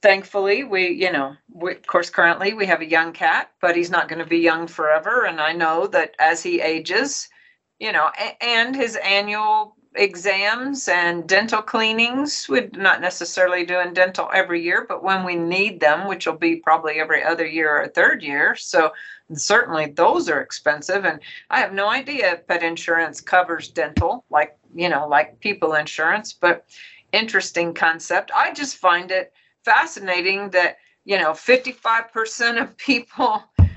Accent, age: American, 50-69